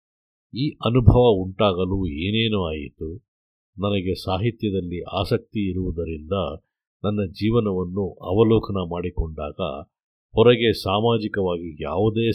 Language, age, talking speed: Kannada, 50-69, 80 wpm